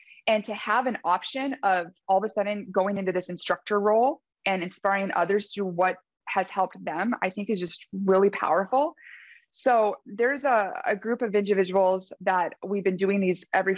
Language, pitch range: English, 180-215 Hz